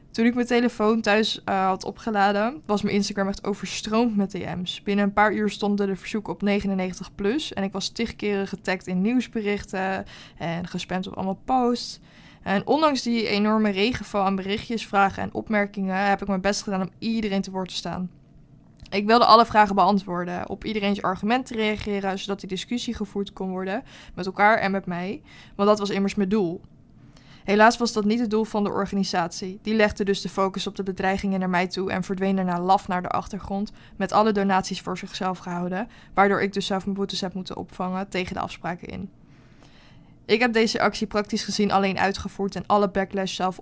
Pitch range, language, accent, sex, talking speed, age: 185-210 Hz, Dutch, Dutch, female, 200 wpm, 20-39